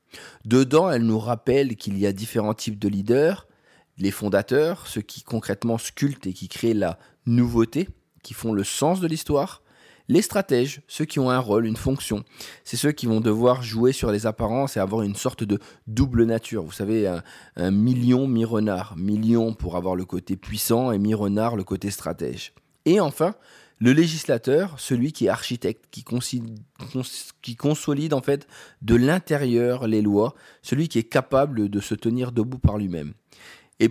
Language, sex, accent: French, male, French